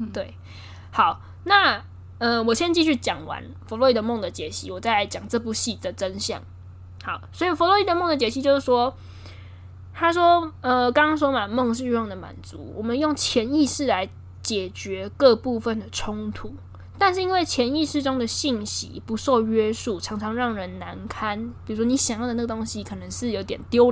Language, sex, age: Chinese, female, 10-29